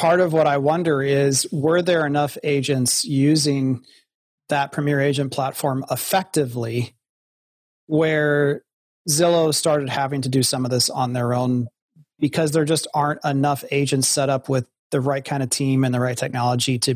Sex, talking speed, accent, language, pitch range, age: male, 165 wpm, American, English, 125-150 Hz, 30-49